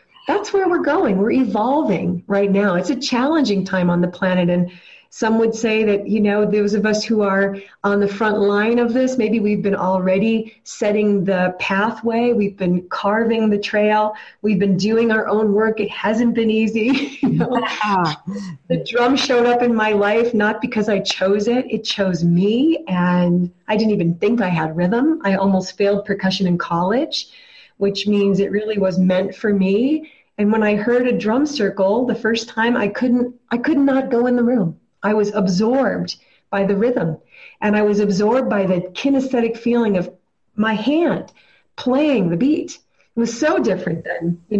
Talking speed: 185 wpm